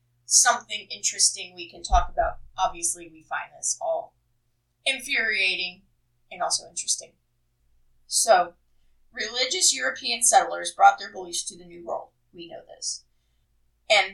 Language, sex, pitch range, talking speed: English, female, 160-225 Hz, 125 wpm